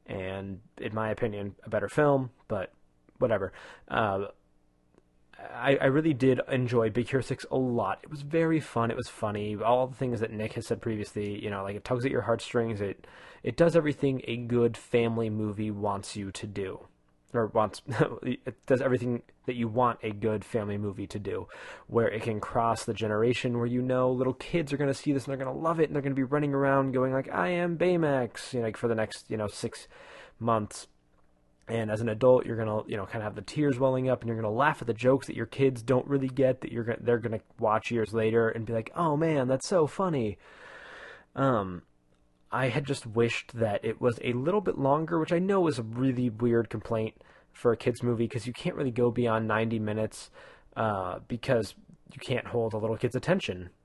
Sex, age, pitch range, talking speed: male, 20-39, 105-130 Hz, 220 wpm